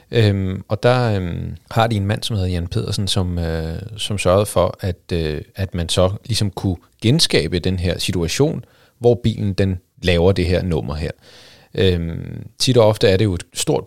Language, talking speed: Danish, 195 wpm